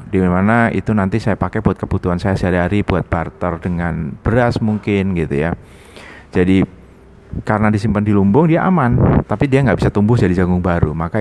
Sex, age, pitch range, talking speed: male, 30-49, 90-110 Hz, 175 wpm